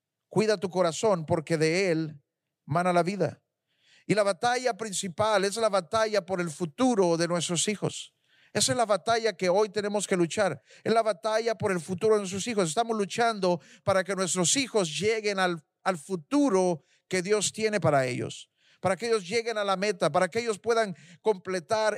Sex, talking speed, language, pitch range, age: male, 185 wpm, Spanish, 180-215 Hz, 50-69